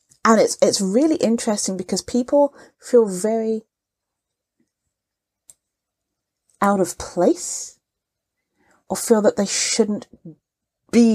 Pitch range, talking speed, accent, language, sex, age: 180-270 Hz, 95 wpm, British, English, female, 40-59